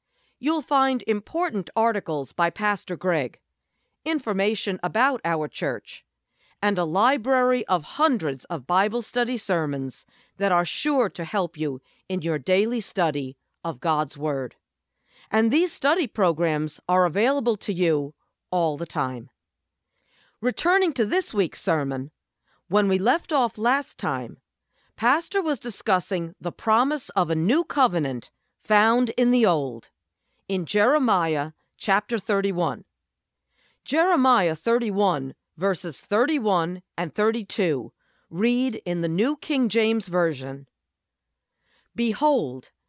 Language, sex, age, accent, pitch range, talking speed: English, female, 50-69, American, 165-235 Hz, 120 wpm